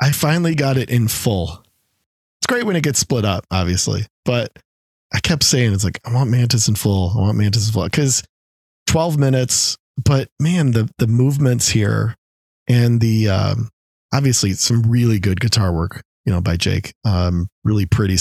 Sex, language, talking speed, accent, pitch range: male, English, 180 wpm, American, 100-125 Hz